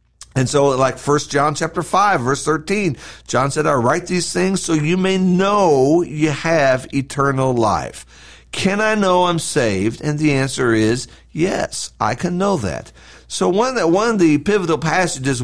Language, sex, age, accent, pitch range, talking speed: English, male, 50-69, American, 125-175 Hz, 180 wpm